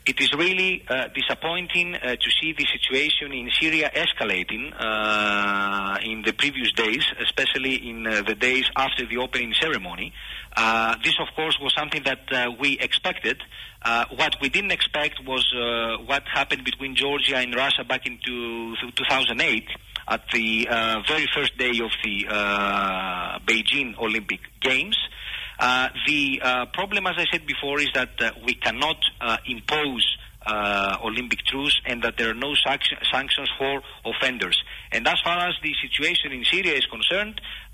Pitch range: 120-150 Hz